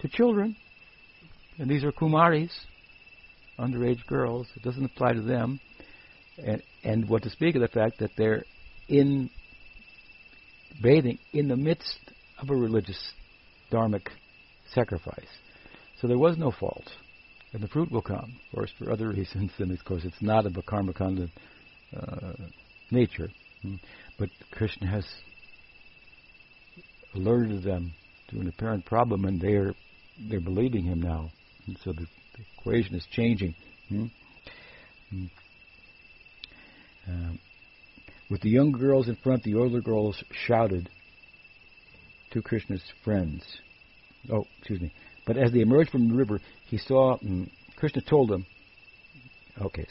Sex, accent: male, American